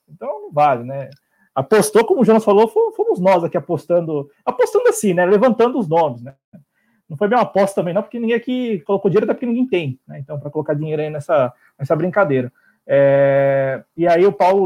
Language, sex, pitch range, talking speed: Portuguese, male, 145-195 Hz, 205 wpm